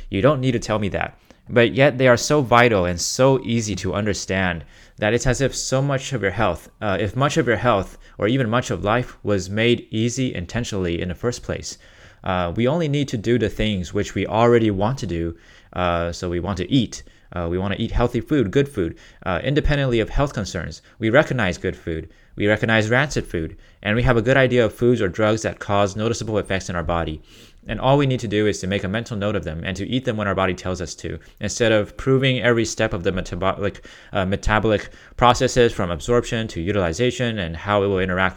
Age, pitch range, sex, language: 20-39, 95-120 Hz, male, Chinese